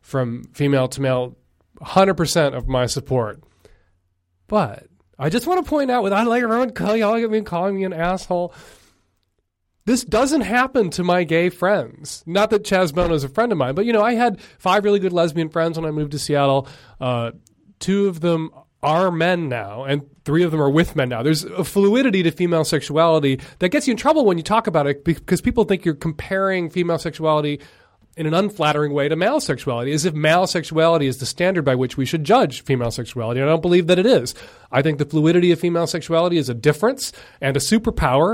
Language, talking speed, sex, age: English, 210 wpm, male, 30-49